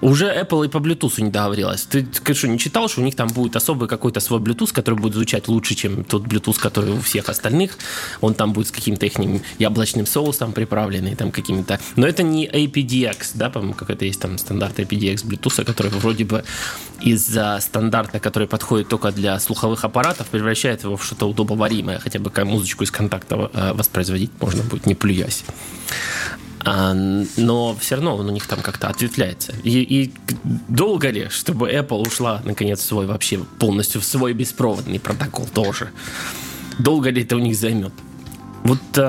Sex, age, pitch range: male, 20-39, 100-125 Hz